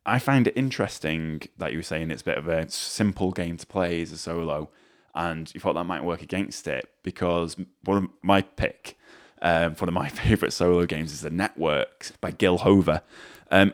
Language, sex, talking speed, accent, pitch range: English, male, 205 wpm, British, 75-95 Hz